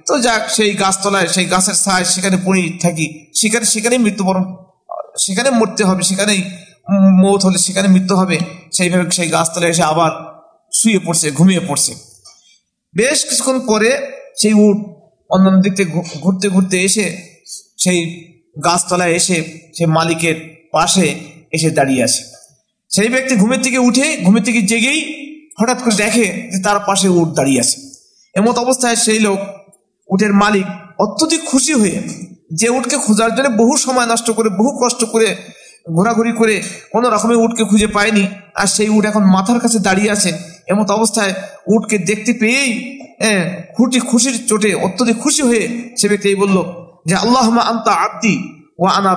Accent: native